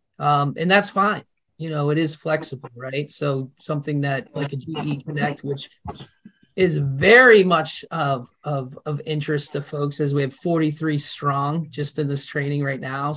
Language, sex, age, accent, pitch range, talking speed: English, male, 30-49, American, 140-160 Hz, 175 wpm